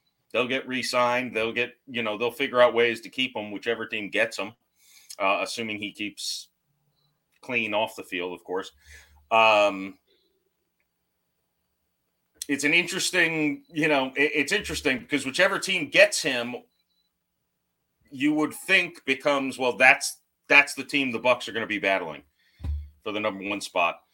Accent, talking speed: American, 155 wpm